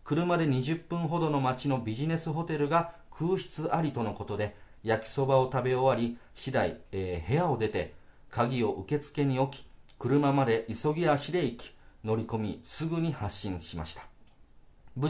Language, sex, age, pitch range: Japanese, male, 40-59, 105-160 Hz